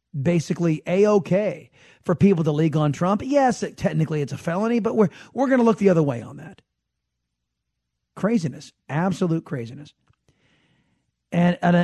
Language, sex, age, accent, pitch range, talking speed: English, male, 40-59, American, 130-180 Hz, 145 wpm